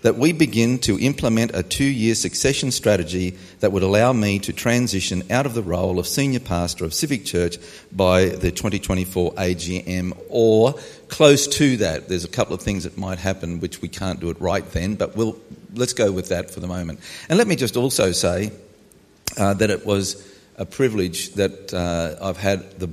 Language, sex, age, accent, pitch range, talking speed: English, male, 50-69, Australian, 90-115 Hz, 195 wpm